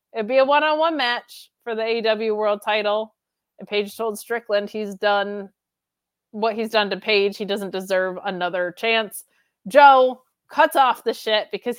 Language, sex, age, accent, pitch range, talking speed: English, female, 20-39, American, 195-235 Hz, 165 wpm